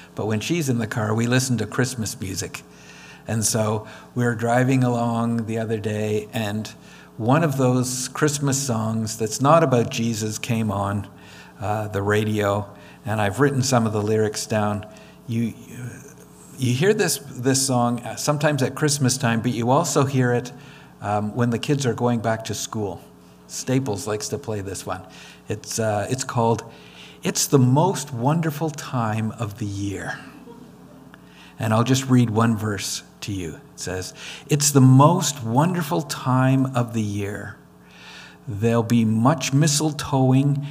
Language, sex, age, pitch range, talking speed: English, male, 50-69, 105-135 Hz, 160 wpm